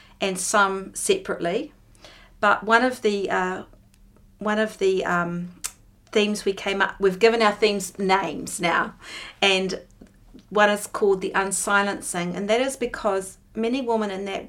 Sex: female